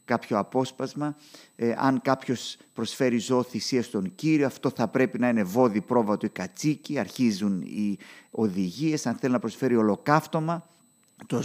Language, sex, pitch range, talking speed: Greek, male, 115-155 Hz, 140 wpm